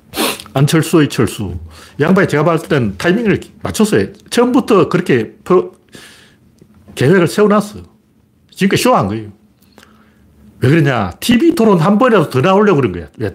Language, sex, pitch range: Korean, male, 105-165 Hz